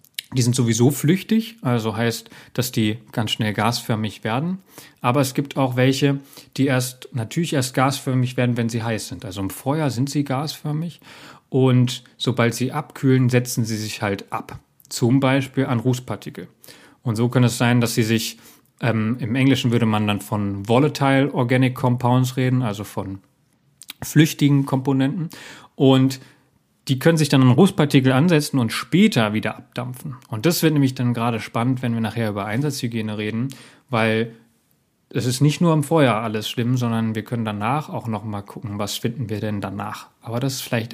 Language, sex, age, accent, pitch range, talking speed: German, male, 40-59, German, 115-135 Hz, 175 wpm